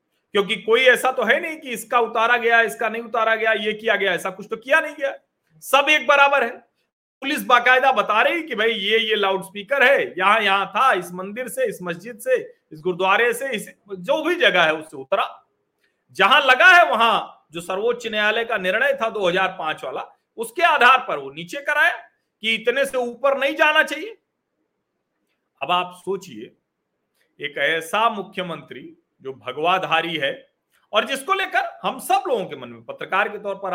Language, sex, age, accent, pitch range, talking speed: Hindi, male, 40-59, native, 190-280 Hz, 185 wpm